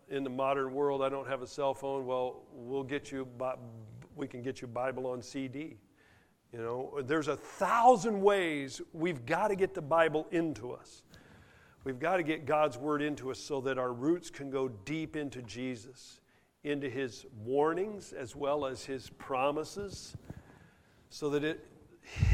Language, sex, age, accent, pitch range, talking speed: English, male, 50-69, American, 135-165 Hz, 170 wpm